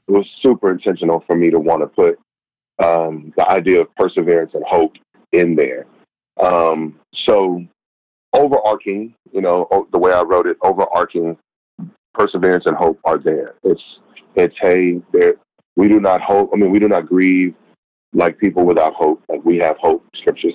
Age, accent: 40-59, American